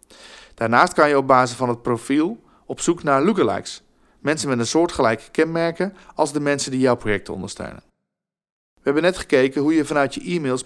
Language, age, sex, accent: Dutch, 40-59, male, Dutch